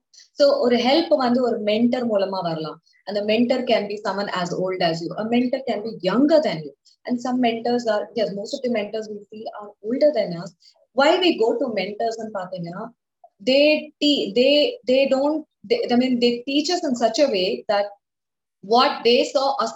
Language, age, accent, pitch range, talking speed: English, 20-39, Indian, 190-255 Hz, 190 wpm